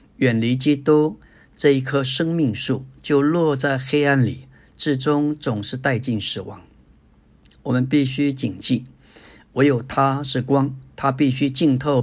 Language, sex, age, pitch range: Chinese, male, 50-69, 120-145 Hz